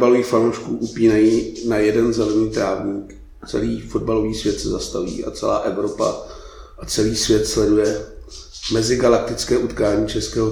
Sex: male